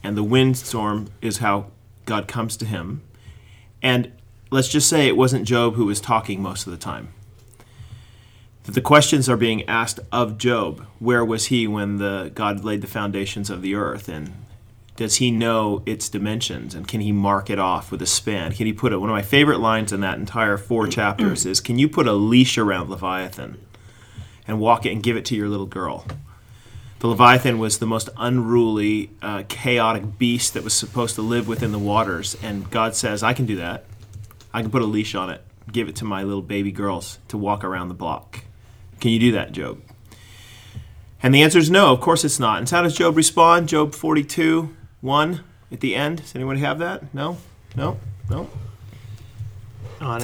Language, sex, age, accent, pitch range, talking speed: English, male, 30-49, American, 100-120 Hz, 200 wpm